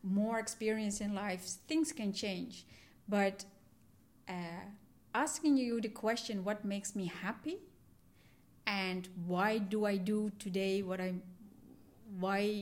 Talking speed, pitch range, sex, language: 130 wpm, 190-225 Hz, female, English